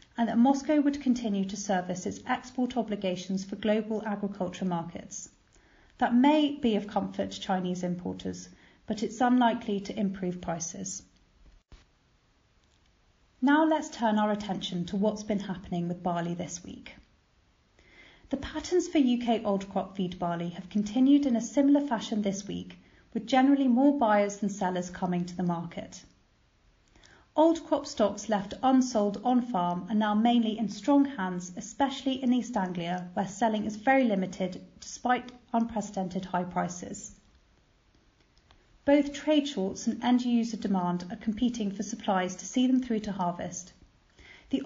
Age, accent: 30-49, British